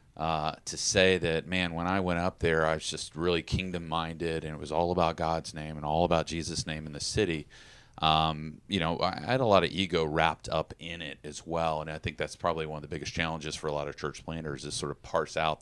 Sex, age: male, 30-49